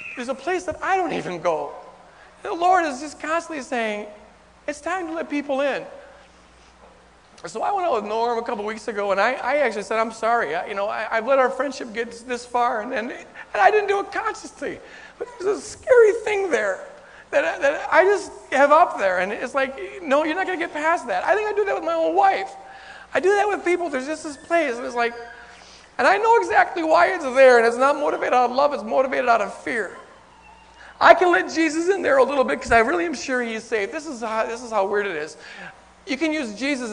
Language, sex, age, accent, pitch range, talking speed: English, male, 40-59, American, 220-325 Hz, 240 wpm